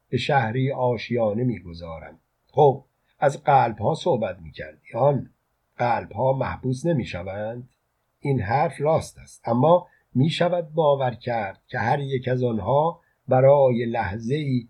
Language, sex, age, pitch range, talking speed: Persian, male, 50-69, 120-140 Hz, 135 wpm